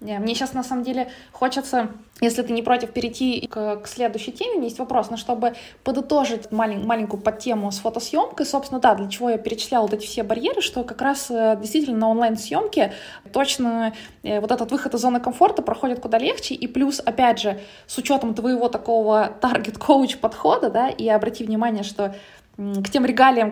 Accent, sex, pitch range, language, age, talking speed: native, female, 210-255 Hz, Russian, 20-39, 175 wpm